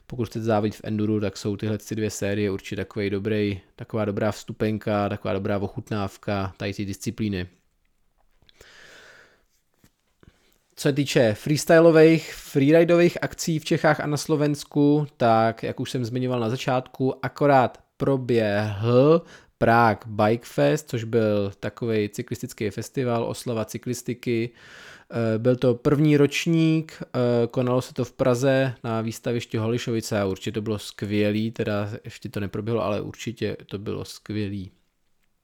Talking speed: 130 wpm